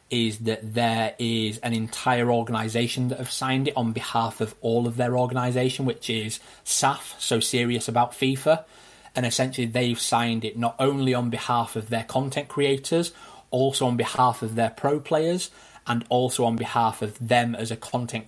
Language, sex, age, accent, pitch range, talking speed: English, male, 20-39, British, 110-125 Hz, 175 wpm